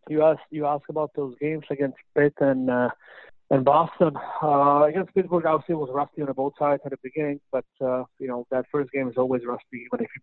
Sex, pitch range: male, 130-145 Hz